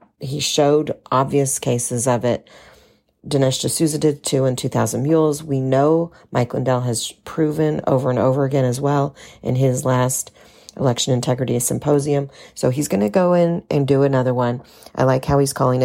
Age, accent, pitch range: 40-59, American, 125-145 Hz